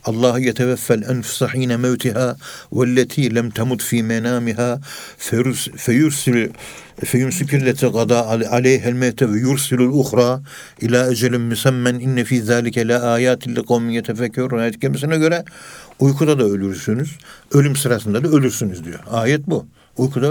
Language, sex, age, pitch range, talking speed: Turkish, male, 60-79, 115-140 Hz, 125 wpm